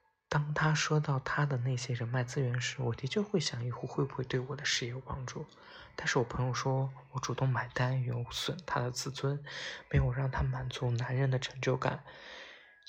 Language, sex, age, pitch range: Chinese, male, 20-39, 125-145 Hz